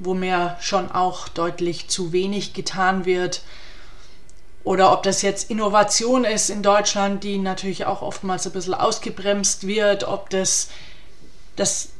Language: German